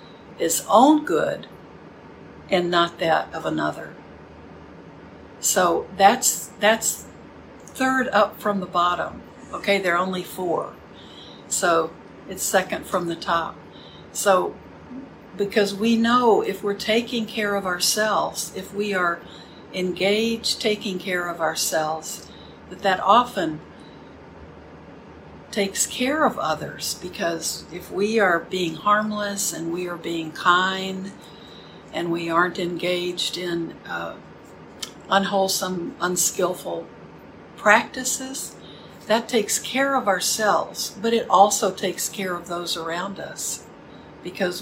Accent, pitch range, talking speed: American, 175-215 Hz, 115 wpm